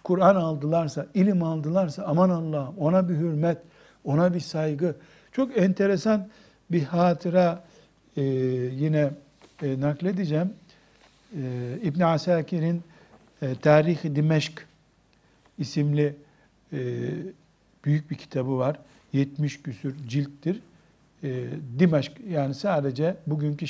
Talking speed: 100 wpm